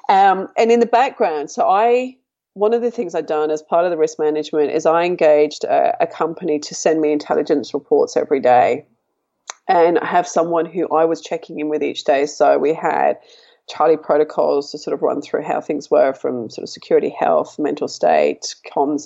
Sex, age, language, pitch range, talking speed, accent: female, 30-49, English, 150-190 Hz, 205 wpm, Australian